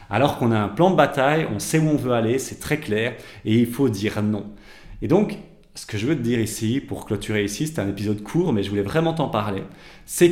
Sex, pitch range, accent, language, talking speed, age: male, 105-140 Hz, French, French, 255 wpm, 30-49